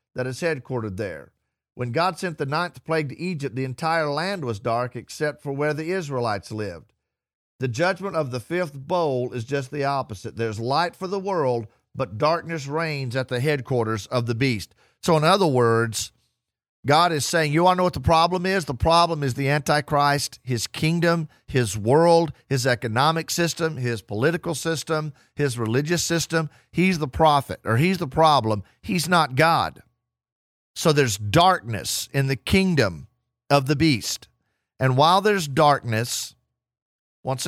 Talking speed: 165 wpm